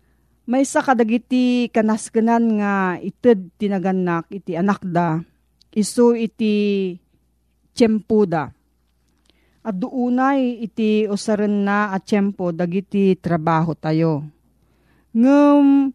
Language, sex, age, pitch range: Filipino, female, 40-59, 175-230 Hz